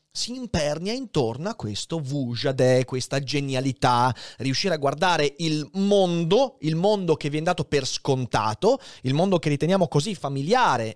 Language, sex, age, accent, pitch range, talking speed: Italian, male, 30-49, native, 130-210 Hz, 150 wpm